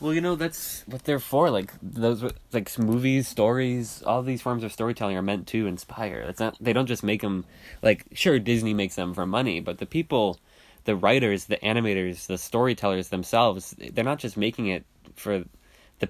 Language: English